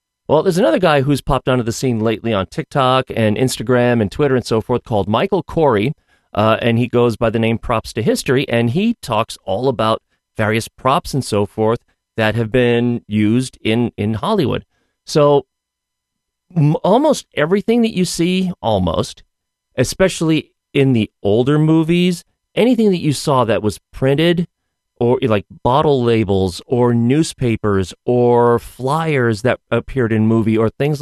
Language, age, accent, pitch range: English, 40-59, American, 110-145 Hz